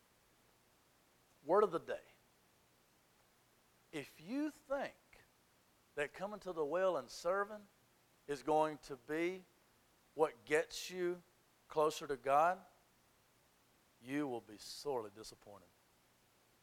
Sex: male